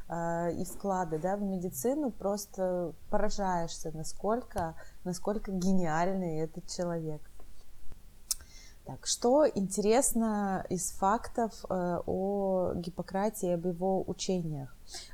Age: 20-39